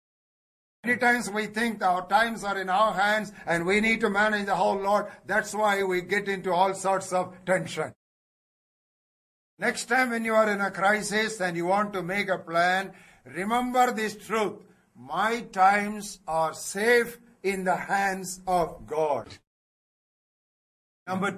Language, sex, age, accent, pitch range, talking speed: English, male, 60-79, Indian, 185-220 Hz, 155 wpm